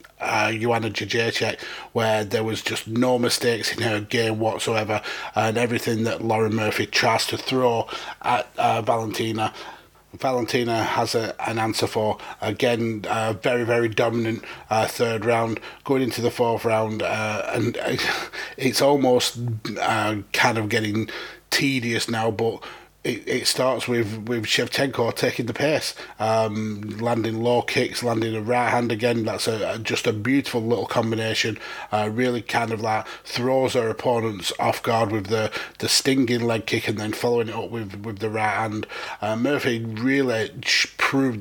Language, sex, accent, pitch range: English, male, British, 110-120 Hz